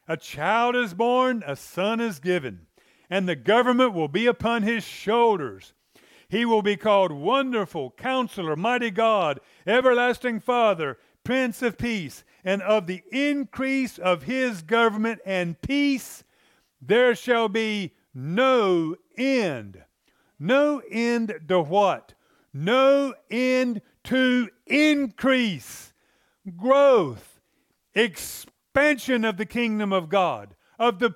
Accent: American